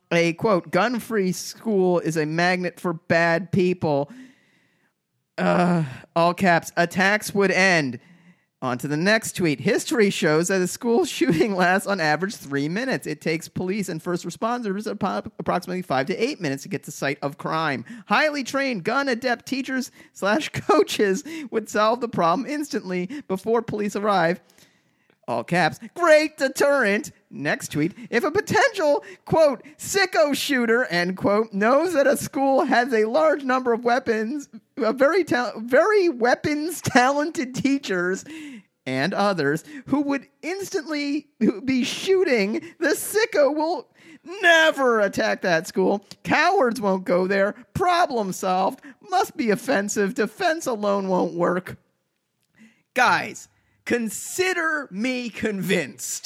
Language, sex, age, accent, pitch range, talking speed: English, male, 40-59, American, 180-275 Hz, 130 wpm